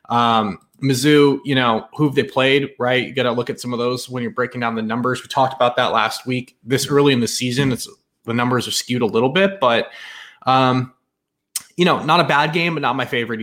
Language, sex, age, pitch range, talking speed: English, male, 20-39, 120-150 Hz, 235 wpm